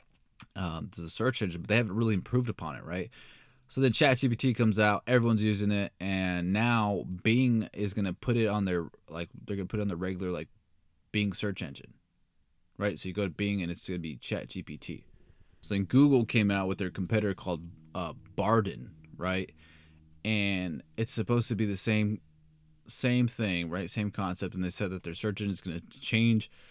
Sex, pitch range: male, 90-110 Hz